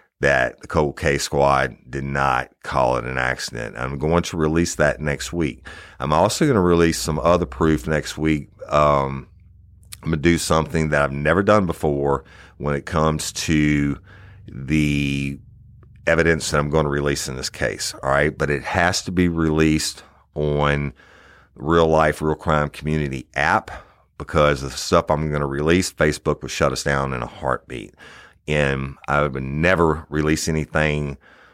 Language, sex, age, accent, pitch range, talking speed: English, male, 50-69, American, 70-80 Hz, 165 wpm